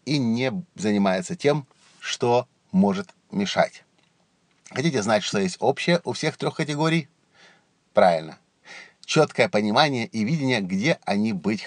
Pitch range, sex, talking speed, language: 125-165 Hz, male, 125 wpm, Russian